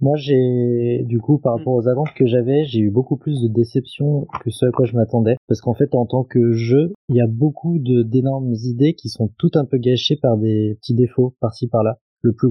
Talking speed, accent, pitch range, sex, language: 240 wpm, French, 115-135 Hz, male, French